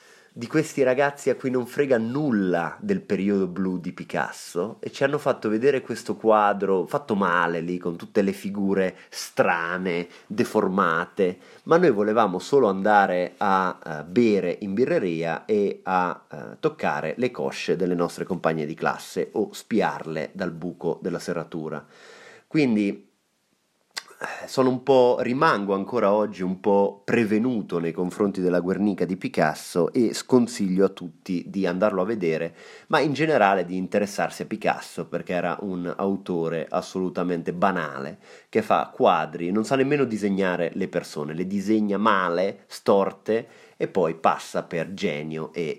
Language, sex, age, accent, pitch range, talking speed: Italian, male, 30-49, native, 90-115 Hz, 145 wpm